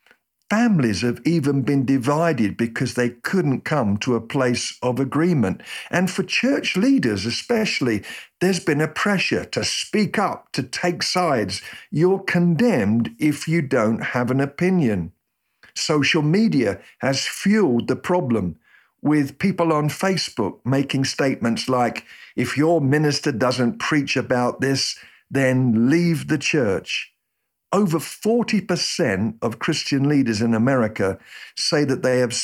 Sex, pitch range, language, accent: male, 120-175 Hz, English, British